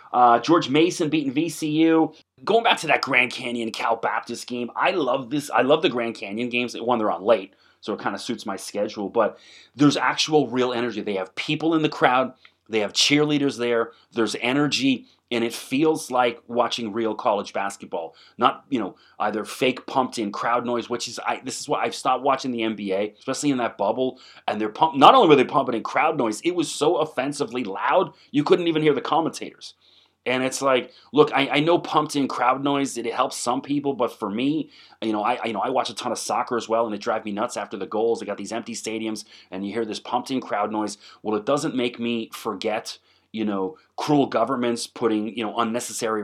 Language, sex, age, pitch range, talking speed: English, male, 30-49, 105-130 Hz, 220 wpm